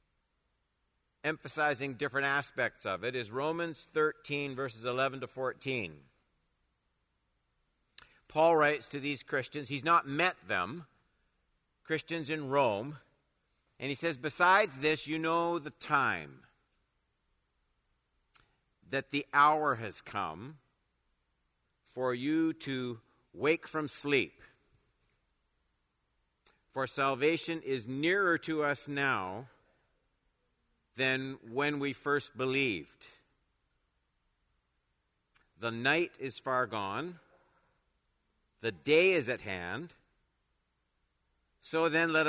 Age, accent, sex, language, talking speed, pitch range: 50-69, American, male, English, 100 wpm, 85-145 Hz